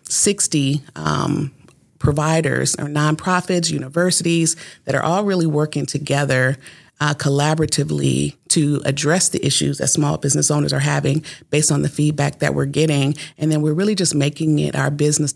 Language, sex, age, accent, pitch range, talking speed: English, female, 40-59, American, 150-170 Hz, 155 wpm